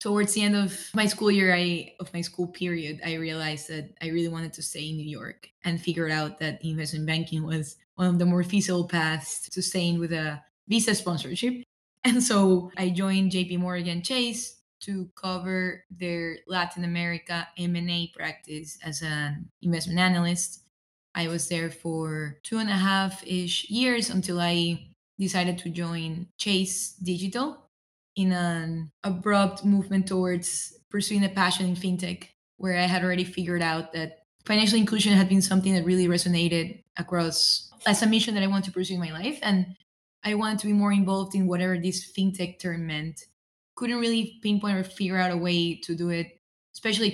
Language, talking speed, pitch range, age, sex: English, 175 wpm, 170-195 Hz, 20-39, female